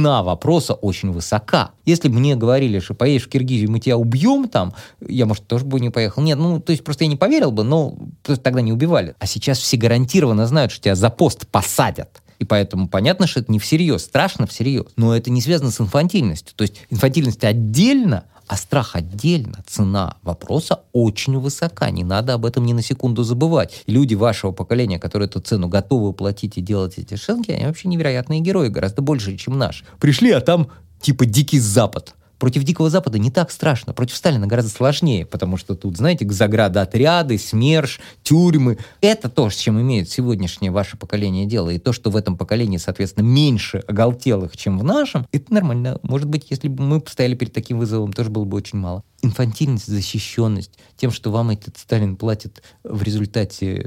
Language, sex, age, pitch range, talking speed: Russian, male, 20-39, 105-150 Hz, 190 wpm